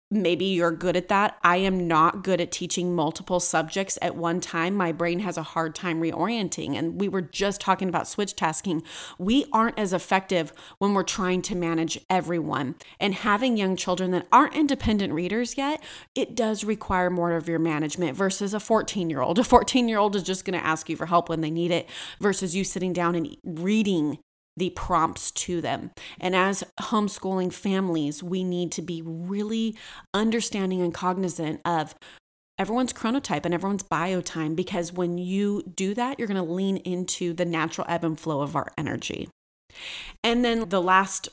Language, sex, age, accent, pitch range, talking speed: English, female, 30-49, American, 170-200 Hz, 180 wpm